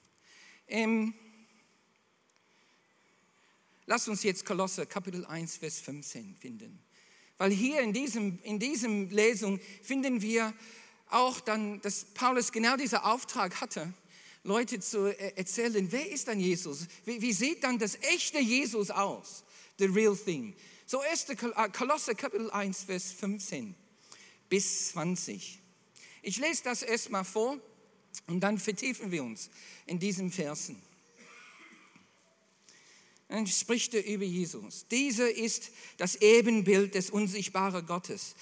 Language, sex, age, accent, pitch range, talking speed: German, male, 50-69, German, 195-235 Hz, 125 wpm